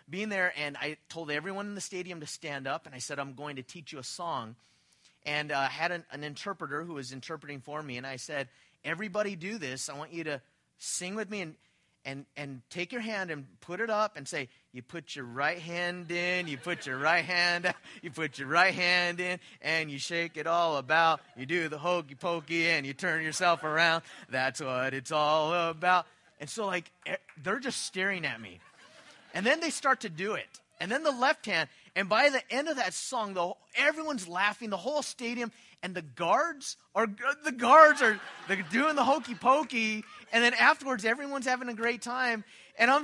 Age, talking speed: 30-49, 210 wpm